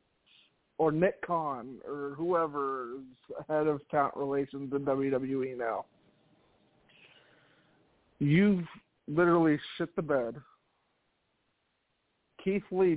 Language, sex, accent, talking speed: English, male, American, 90 wpm